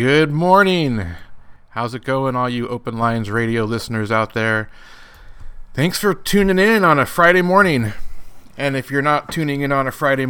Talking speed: 175 wpm